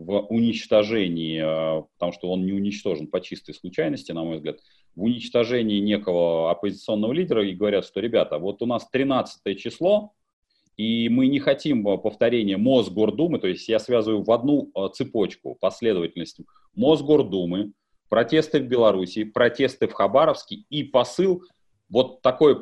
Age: 30-49